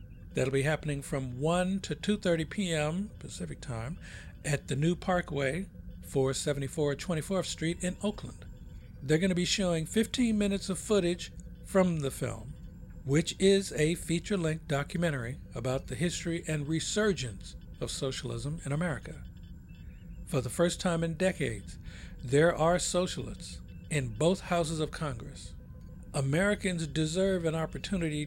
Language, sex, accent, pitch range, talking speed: English, male, American, 130-175 Hz, 135 wpm